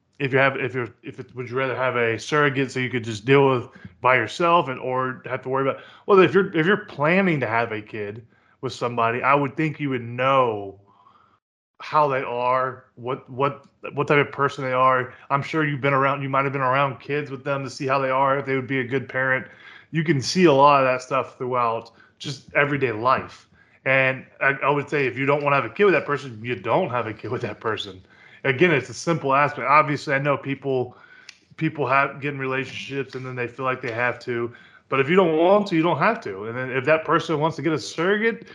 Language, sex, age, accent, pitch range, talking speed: English, male, 20-39, American, 130-155 Hz, 245 wpm